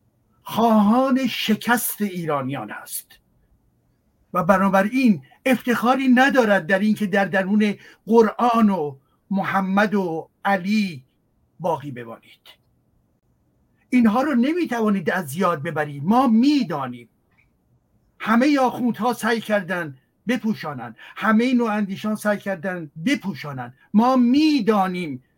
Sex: male